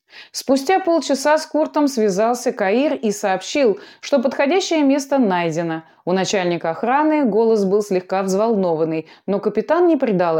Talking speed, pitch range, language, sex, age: 135 wpm, 180-285 Hz, Russian, female, 20-39